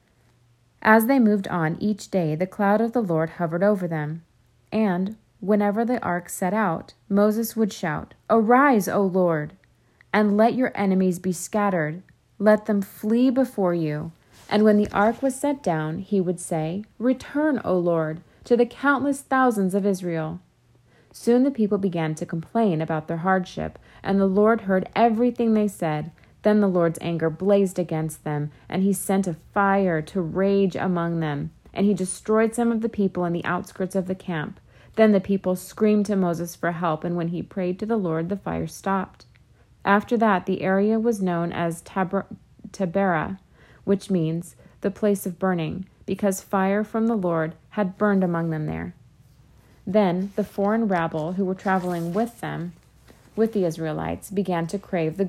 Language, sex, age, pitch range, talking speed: English, female, 30-49, 170-210 Hz, 175 wpm